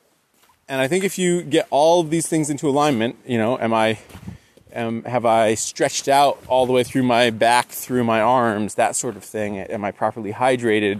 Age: 20-39